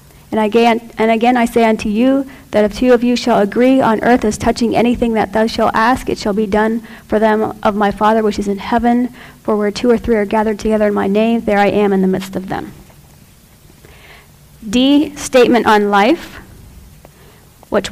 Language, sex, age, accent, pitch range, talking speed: English, female, 40-59, American, 210-235 Hz, 200 wpm